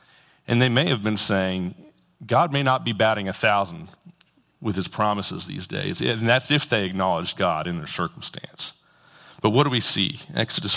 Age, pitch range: 40-59, 90-110 Hz